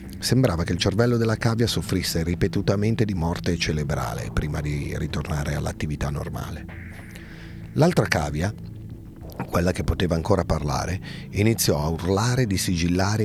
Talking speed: 125 wpm